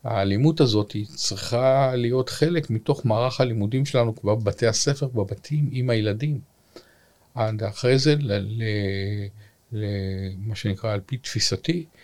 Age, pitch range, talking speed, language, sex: 50-69, 100-145 Hz, 105 wpm, Hebrew, male